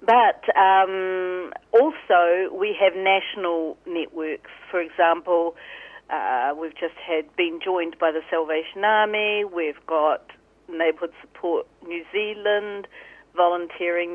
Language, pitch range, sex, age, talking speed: English, 170-215 Hz, female, 50-69, 110 wpm